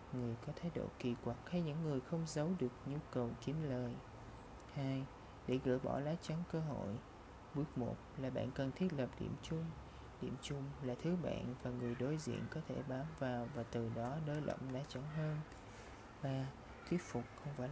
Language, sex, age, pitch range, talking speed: Vietnamese, male, 20-39, 120-150 Hz, 200 wpm